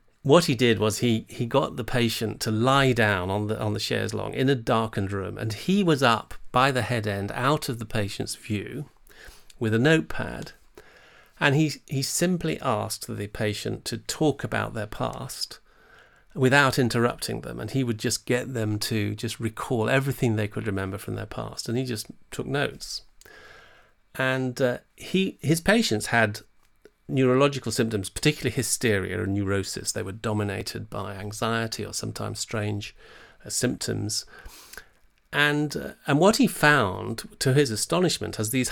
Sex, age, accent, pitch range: male, 40-59, British, 105-135 Hz